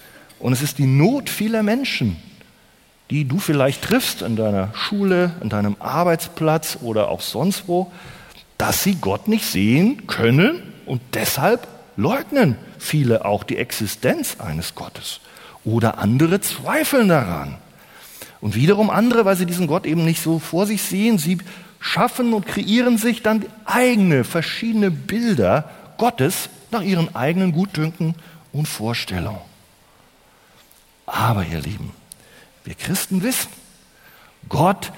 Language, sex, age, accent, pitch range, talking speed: German, male, 40-59, German, 135-225 Hz, 130 wpm